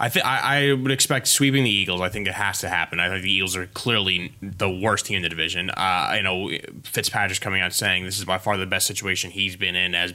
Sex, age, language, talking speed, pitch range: male, 10-29, English, 260 wpm, 90-105 Hz